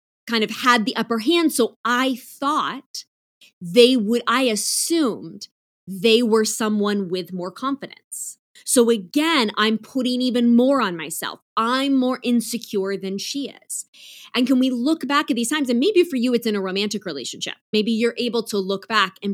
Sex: female